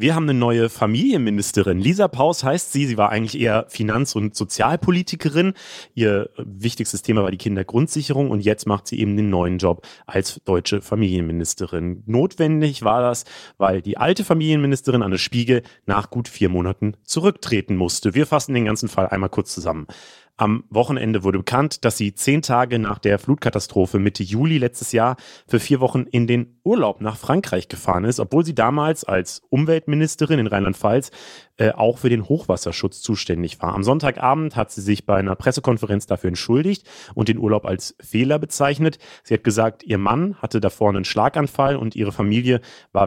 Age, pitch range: 30-49, 100-135 Hz